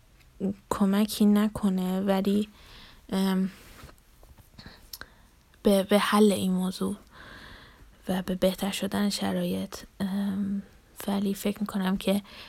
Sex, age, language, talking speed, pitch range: female, 10-29, Persian, 75 wpm, 190-205 Hz